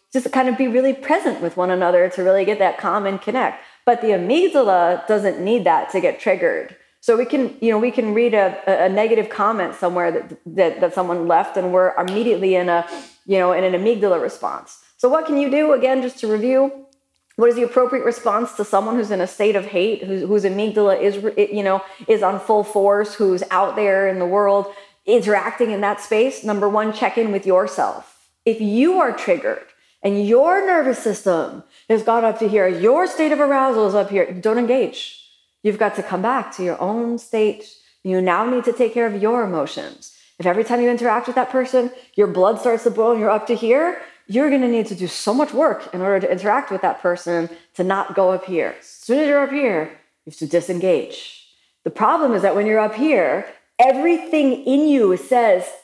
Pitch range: 195-255 Hz